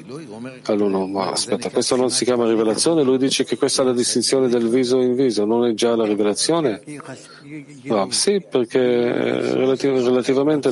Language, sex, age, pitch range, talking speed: Italian, male, 40-59, 115-140 Hz, 170 wpm